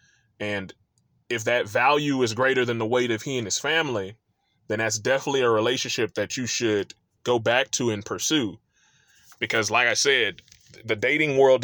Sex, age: male, 20-39